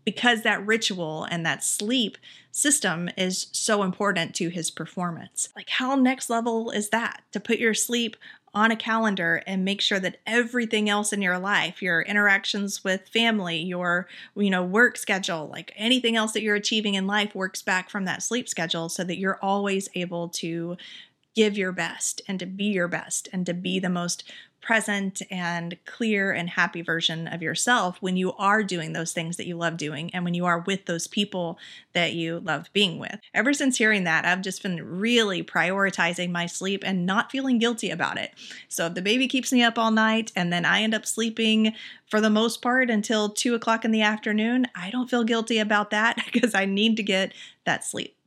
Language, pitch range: English, 180-225 Hz